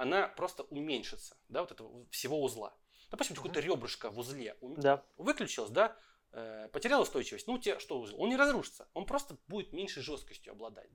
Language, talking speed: Russian, 170 wpm